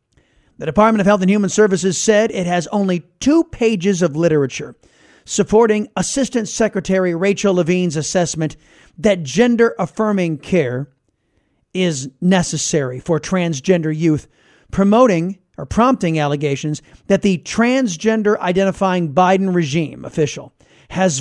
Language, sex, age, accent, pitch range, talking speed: English, male, 40-59, American, 160-205 Hz, 120 wpm